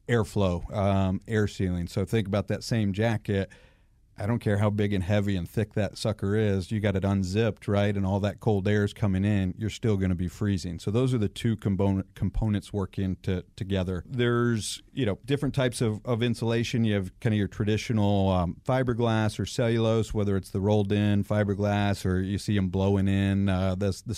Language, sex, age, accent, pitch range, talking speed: English, male, 40-59, American, 95-110 Hz, 205 wpm